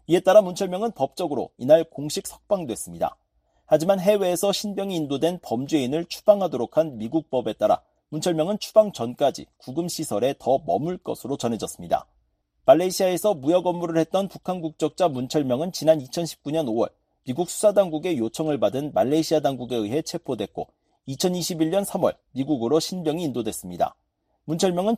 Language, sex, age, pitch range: Korean, male, 40-59, 135-185 Hz